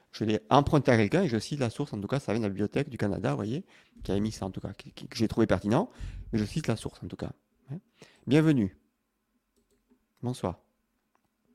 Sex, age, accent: male, 40-59, French